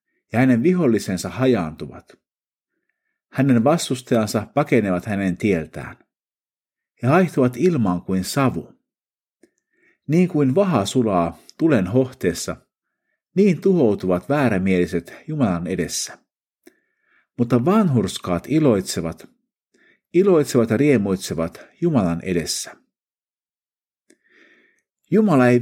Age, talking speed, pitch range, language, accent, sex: 50-69, 80 wpm, 95-160 Hz, Finnish, native, male